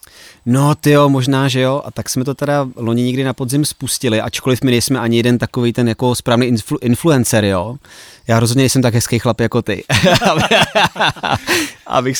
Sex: male